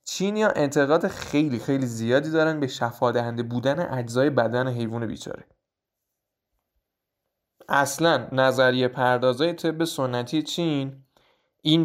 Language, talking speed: Persian, 100 wpm